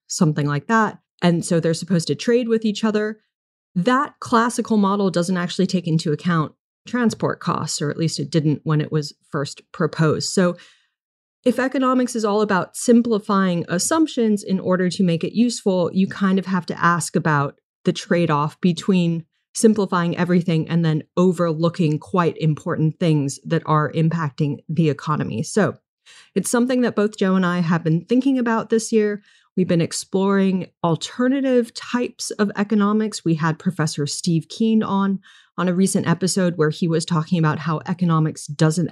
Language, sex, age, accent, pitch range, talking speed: English, female, 30-49, American, 160-210 Hz, 170 wpm